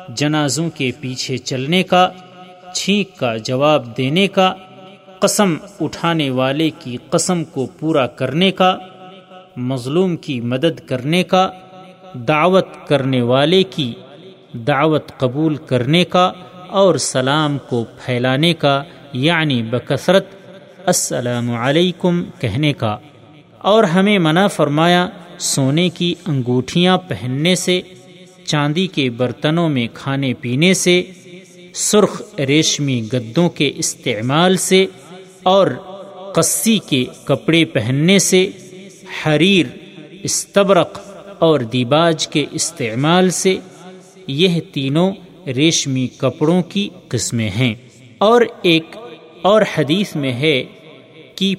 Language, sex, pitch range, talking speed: Urdu, male, 135-185 Hz, 105 wpm